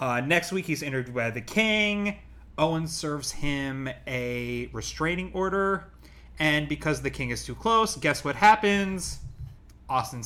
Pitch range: 120-170 Hz